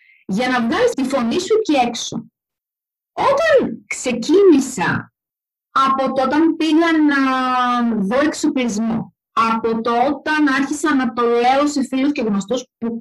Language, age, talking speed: Greek, 30-49, 125 wpm